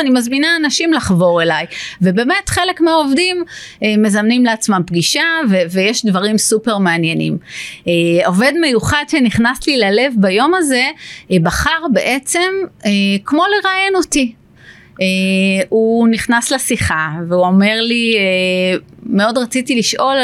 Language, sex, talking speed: Hebrew, female, 120 wpm